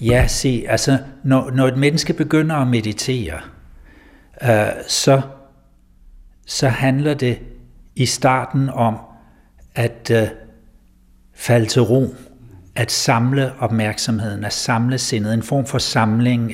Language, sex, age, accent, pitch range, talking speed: Danish, male, 60-79, native, 110-130 Hz, 115 wpm